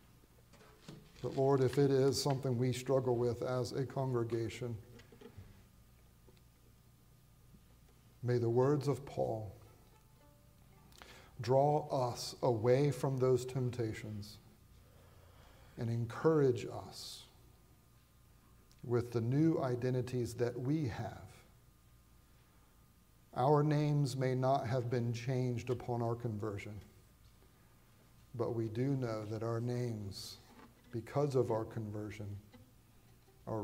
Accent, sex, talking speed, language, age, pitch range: American, male, 100 wpm, English, 50-69, 110-125 Hz